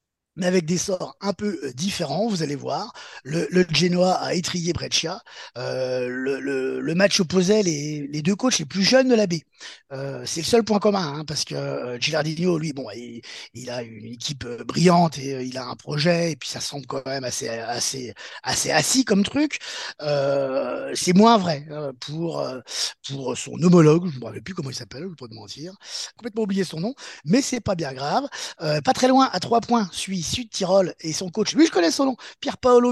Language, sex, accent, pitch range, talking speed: French, male, French, 150-225 Hz, 220 wpm